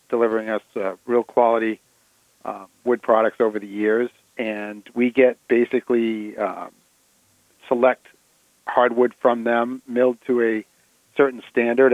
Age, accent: 50-69, American